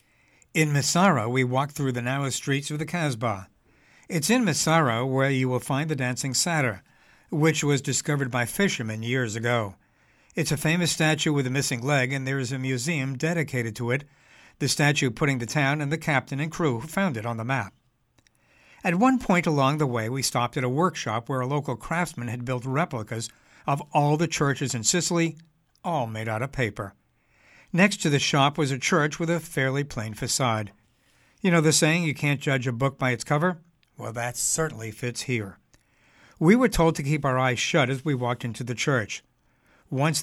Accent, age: American, 60-79